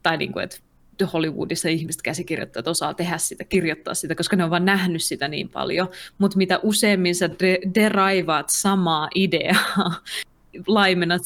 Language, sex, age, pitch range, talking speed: Finnish, female, 20-39, 165-195 Hz, 140 wpm